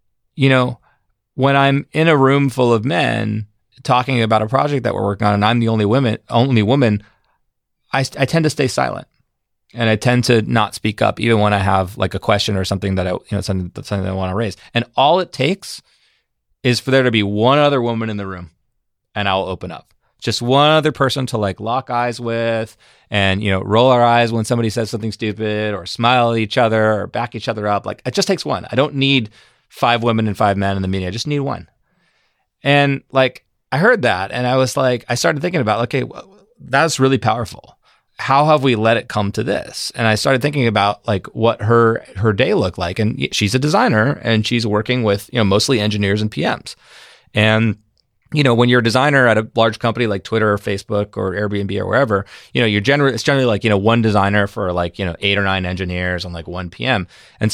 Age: 30-49